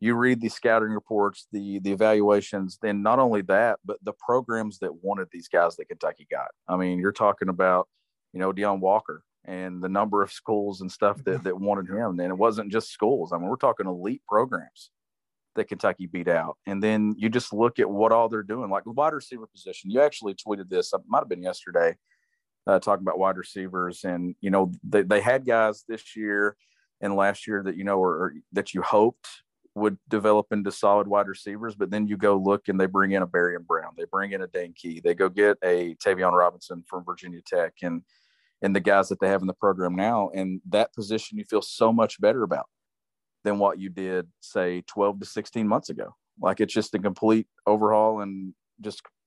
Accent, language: American, English